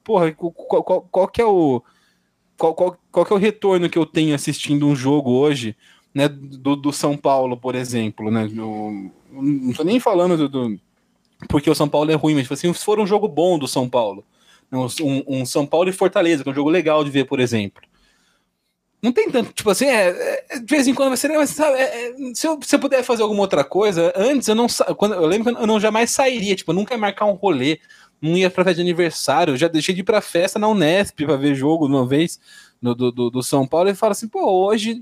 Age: 20-39